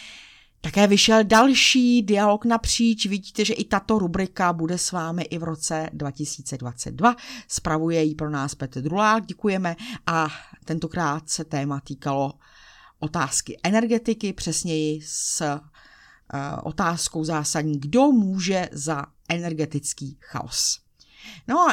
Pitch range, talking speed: 160-215 Hz, 115 wpm